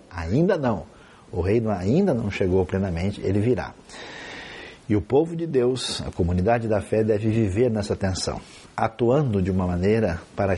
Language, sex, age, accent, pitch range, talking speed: Portuguese, male, 50-69, Brazilian, 95-115 Hz, 160 wpm